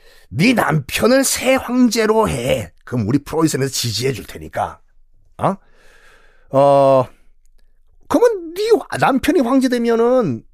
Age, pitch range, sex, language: 40-59, 120-195 Hz, male, Korean